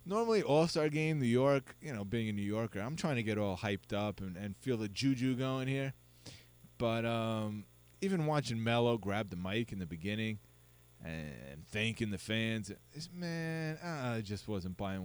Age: 20-39